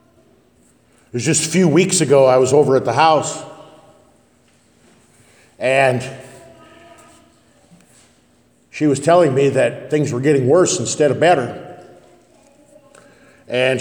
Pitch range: 120-155 Hz